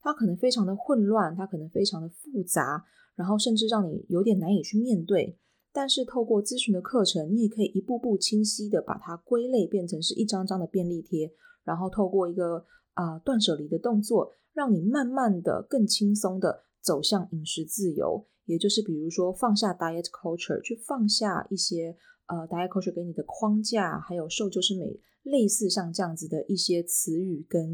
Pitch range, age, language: 170-225 Hz, 20-39, Chinese